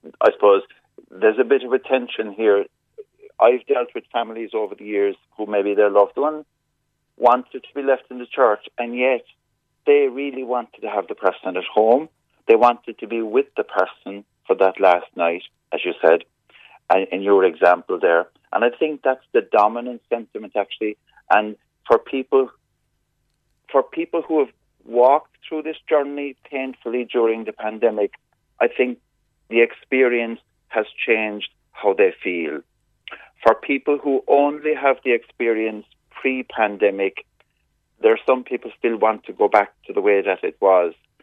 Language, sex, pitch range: English, male, 110-150 Hz